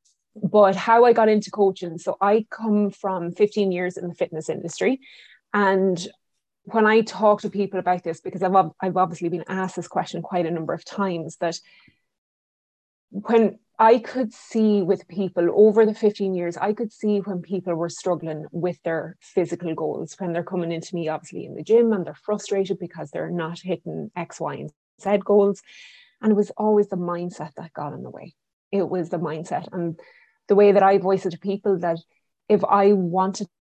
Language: English